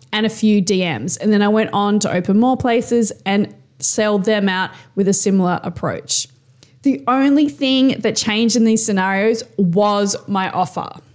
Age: 20-39